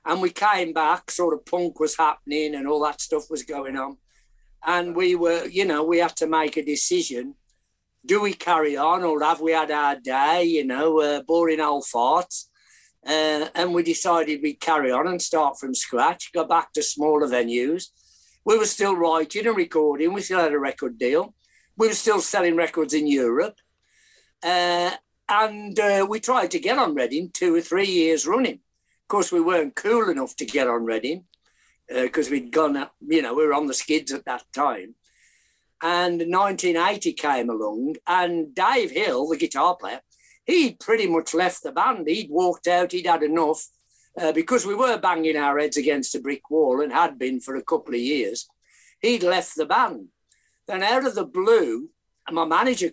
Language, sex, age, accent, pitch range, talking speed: English, male, 60-79, British, 150-180 Hz, 190 wpm